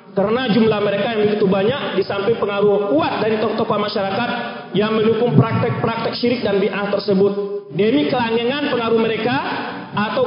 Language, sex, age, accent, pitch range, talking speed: English, male, 30-49, Indonesian, 205-260 Hz, 140 wpm